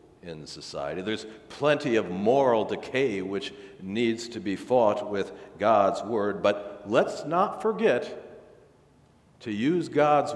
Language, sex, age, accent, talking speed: English, male, 60-79, American, 125 wpm